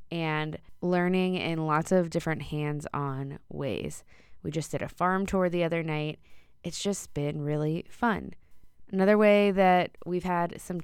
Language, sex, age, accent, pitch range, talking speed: English, female, 20-39, American, 150-180 Hz, 155 wpm